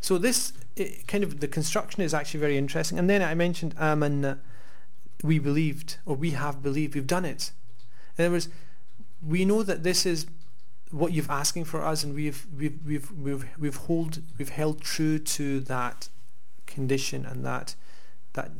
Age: 30-49